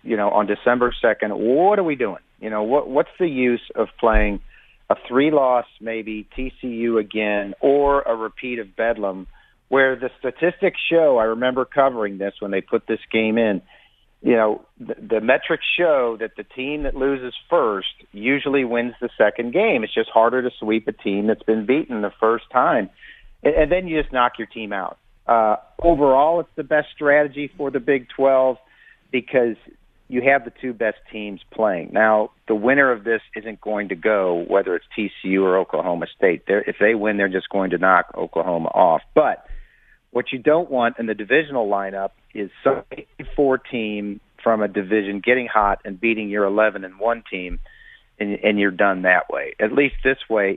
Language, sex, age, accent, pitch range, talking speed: English, male, 50-69, American, 100-130 Hz, 185 wpm